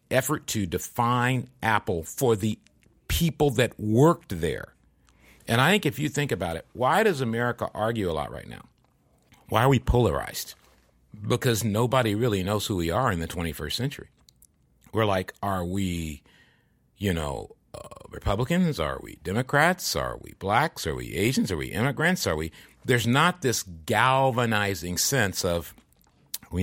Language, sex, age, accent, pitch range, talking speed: English, male, 50-69, American, 90-125 Hz, 160 wpm